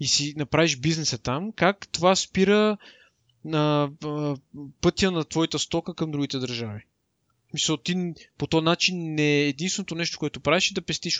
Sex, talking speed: male, 165 wpm